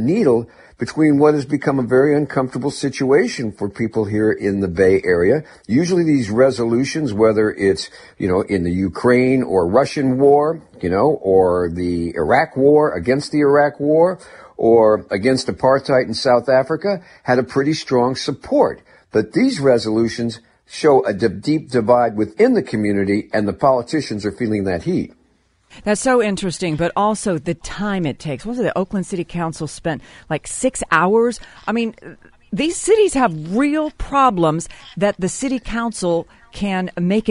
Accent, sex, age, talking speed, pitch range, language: American, male, 50-69, 160 wpm, 115-175 Hz, English